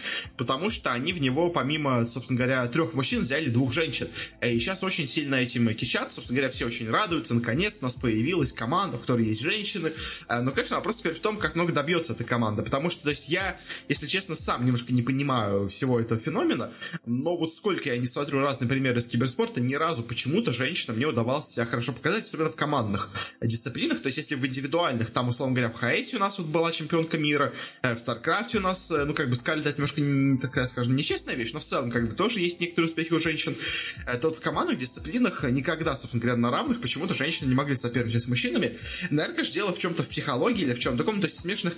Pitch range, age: 120-165 Hz, 20-39